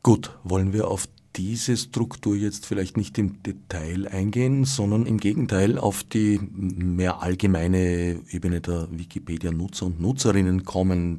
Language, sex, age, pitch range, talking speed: German, male, 50-69, 95-120 Hz, 135 wpm